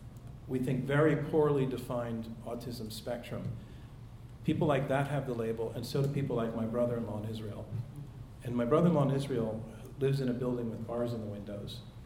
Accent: American